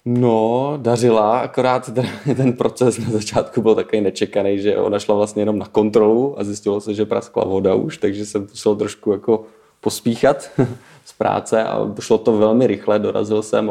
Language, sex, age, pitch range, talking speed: Czech, male, 20-39, 95-110 Hz, 170 wpm